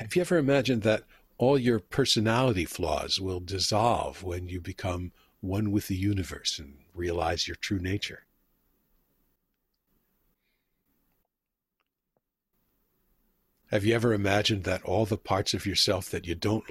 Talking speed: 130 wpm